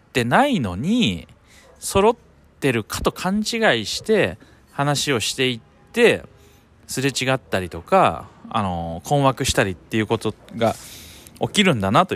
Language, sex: Japanese, male